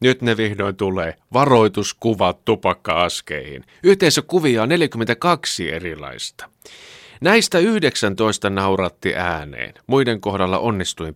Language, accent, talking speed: Finnish, native, 95 wpm